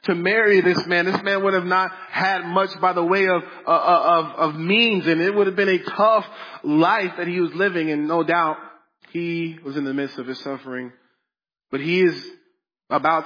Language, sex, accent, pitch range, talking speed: English, male, American, 140-170 Hz, 205 wpm